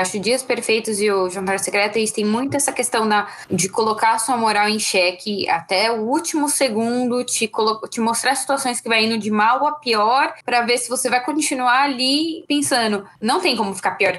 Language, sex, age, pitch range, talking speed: Portuguese, female, 10-29, 190-235 Hz, 210 wpm